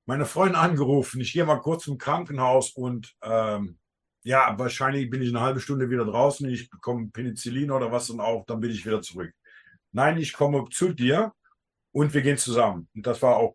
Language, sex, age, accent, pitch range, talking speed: English, male, 50-69, German, 120-150 Hz, 200 wpm